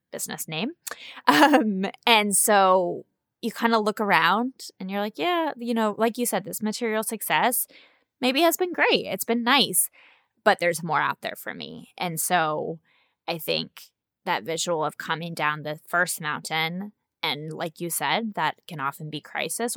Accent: American